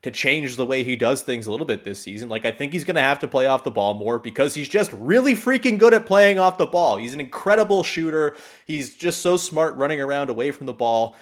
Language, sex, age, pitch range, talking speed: English, male, 30-49, 125-170 Hz, 265 wpm